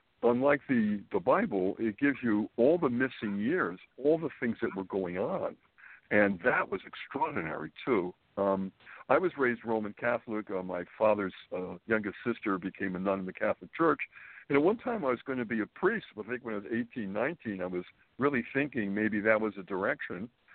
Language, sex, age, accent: English, male, 60-79, American